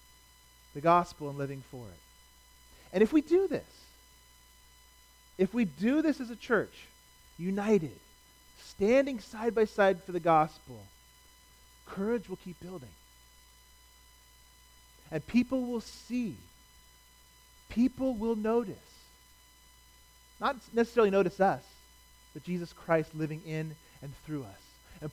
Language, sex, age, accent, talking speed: English, male, 40-59, American, 120 wpm